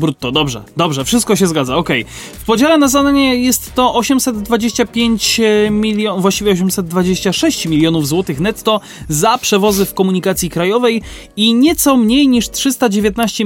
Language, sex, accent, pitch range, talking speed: Polish, male, native, 165-235 Hz, 135 wpm